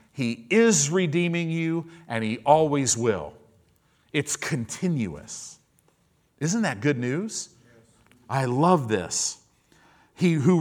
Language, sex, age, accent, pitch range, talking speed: English, male, 50-69, American, 110-155 Hz, 105 wpm